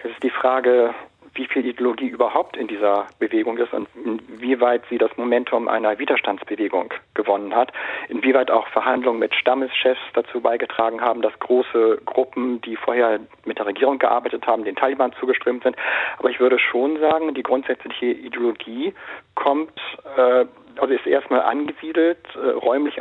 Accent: German